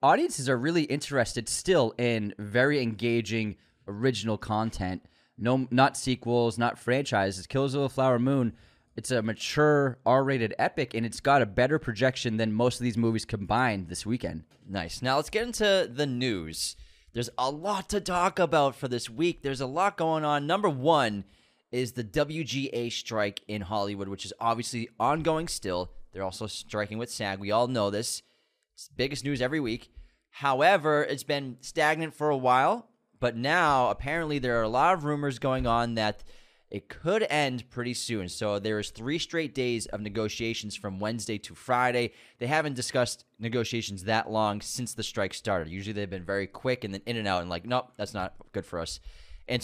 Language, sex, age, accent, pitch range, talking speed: English, male, 20-39, American, 105-140 Hz, 185 wpm